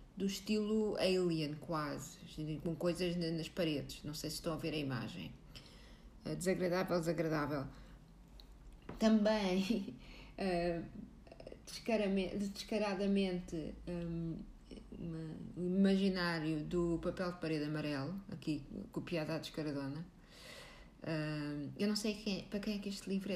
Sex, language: female, Portuguese